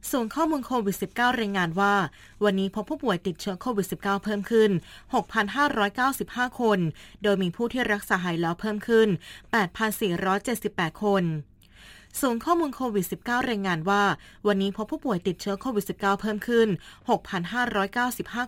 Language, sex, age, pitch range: Thai, female, 20-39, 190-225 Hz